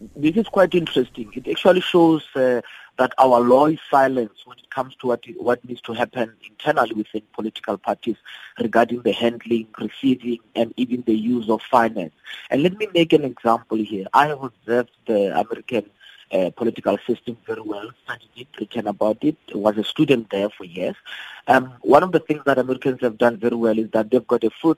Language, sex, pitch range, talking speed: English, male, 115-140 Hz, 195 wpm